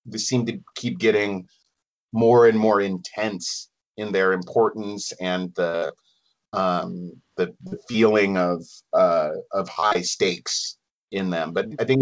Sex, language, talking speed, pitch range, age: male, Italian, 140 wpm, 95-115 Hz, 30-49